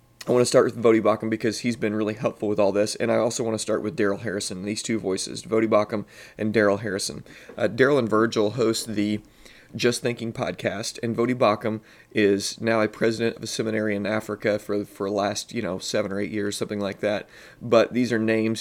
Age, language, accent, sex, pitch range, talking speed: 30-49, English, American, male, 105-115 Hz, 220 wpm